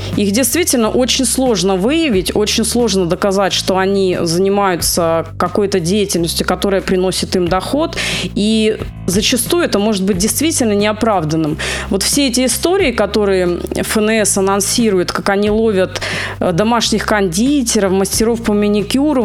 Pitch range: 190-230 Hz